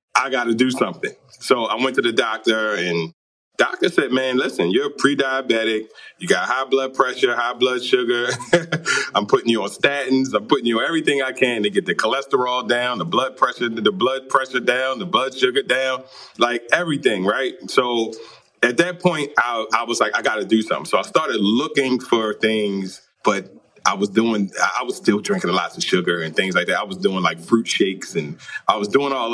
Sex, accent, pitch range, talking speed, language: male, American, 115-175 Hz, 210 wpm, English